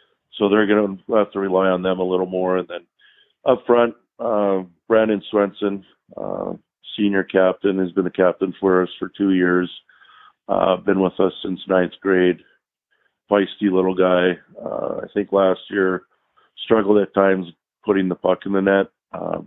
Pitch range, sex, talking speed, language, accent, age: 90-100 Hz, male, 175 wpm, English, American, 40-59